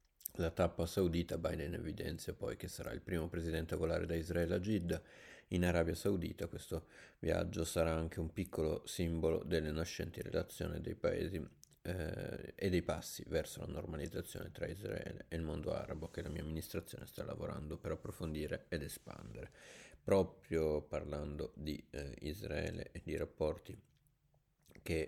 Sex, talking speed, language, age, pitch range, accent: male, 150 wpm, Italian, 30-49, 80-90 Hz, native